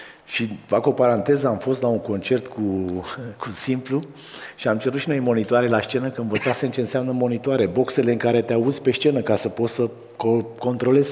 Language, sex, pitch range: Romanian, male, 125-195 Hz